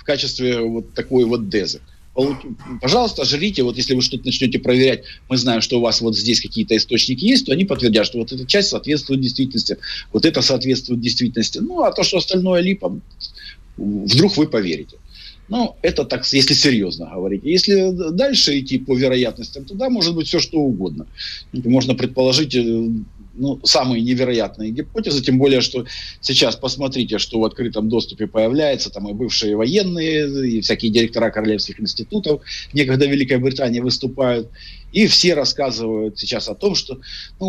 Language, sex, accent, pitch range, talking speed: Russian, male, native, 120-165 Hz, 165 wpm